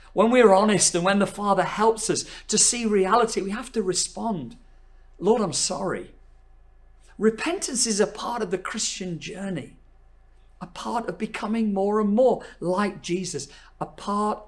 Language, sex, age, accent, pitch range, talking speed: English, male, 40-59, British, 170-250 Hz, 160 wpm